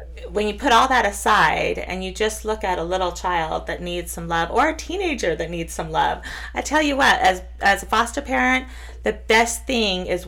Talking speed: 220 wpm